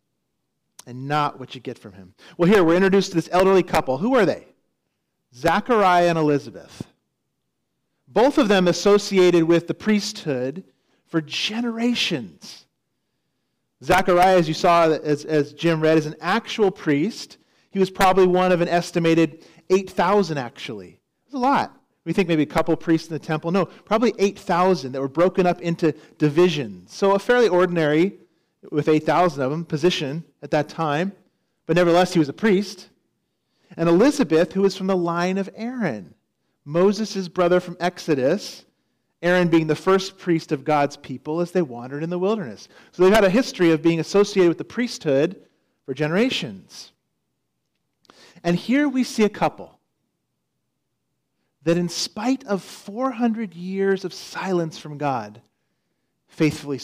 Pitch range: 155-195 Hz